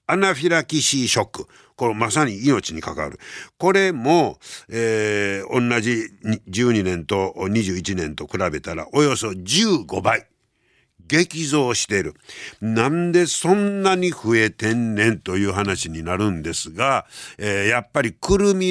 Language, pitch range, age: Japanese, 105-160 Hz, 60-79